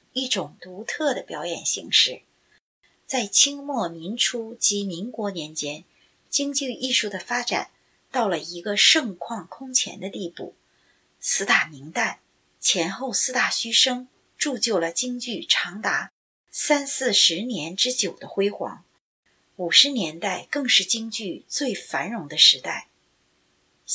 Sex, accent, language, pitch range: female, native, Chinese, 185-260 Hz